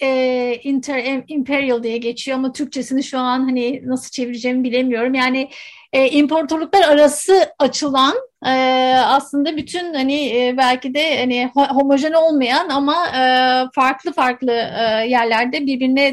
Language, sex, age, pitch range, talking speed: Turkish, female, 50-69, 250-290 Hz, 130 wpm